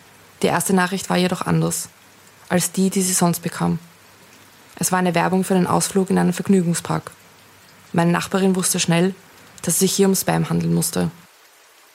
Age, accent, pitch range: 20-39, German, 170-190 Hz